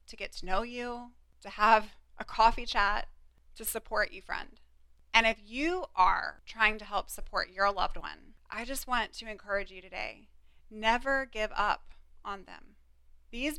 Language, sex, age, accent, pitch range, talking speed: English, female, 20-39, American, 190-230 Hz, 170 wpm